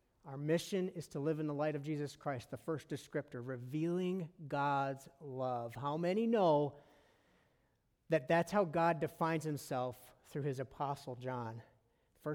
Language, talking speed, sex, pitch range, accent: English, 150 wpm, male, 135-170 Hz, American